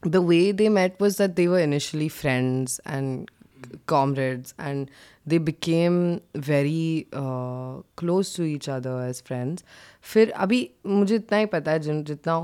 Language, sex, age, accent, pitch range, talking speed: Hindi, female, 20-39, native, 140-180 Hz, 155 wpm